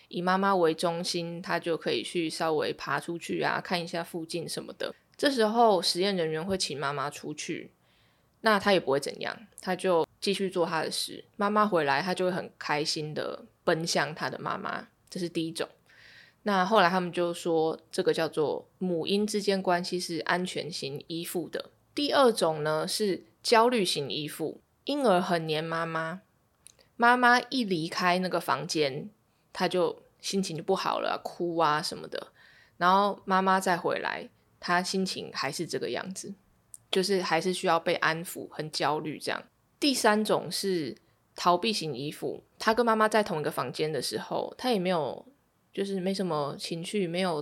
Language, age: Chinese, 20-39